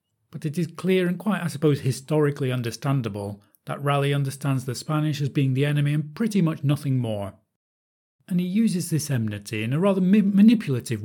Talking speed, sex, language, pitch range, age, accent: 180 wpm, male, English, 115-150 Hz, 30-49, British